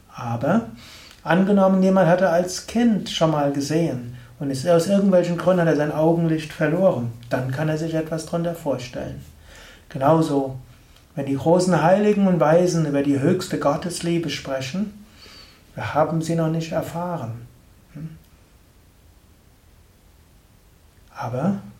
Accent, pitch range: German, 130-170 Hz